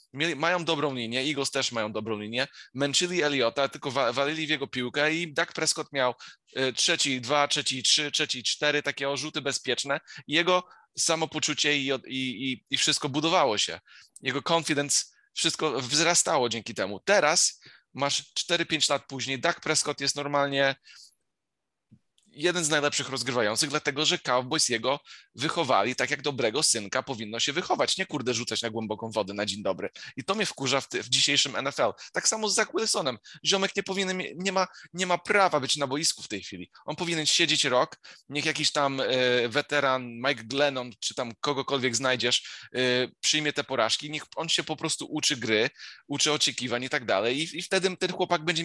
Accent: native